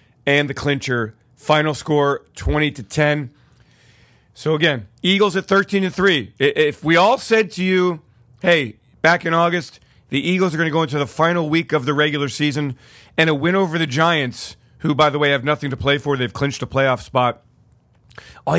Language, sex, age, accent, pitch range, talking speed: English, male, 40-59, American, 135-160 Hz, 195 wpm